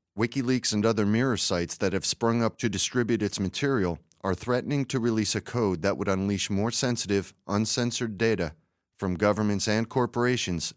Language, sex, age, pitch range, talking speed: English, male, 40-59, 95-120 Hz, 165 wpm